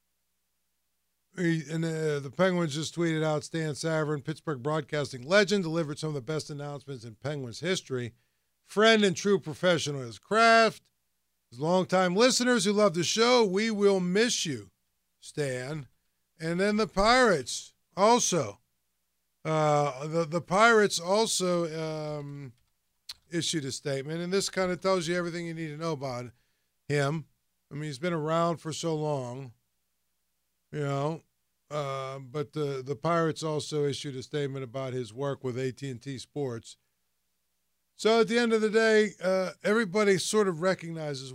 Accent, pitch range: American, 115-175 Hz